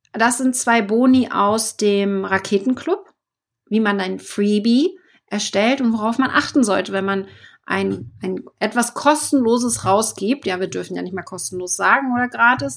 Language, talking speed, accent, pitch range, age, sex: German, 160 wpm, German, 200-250 Hz, 30-49, female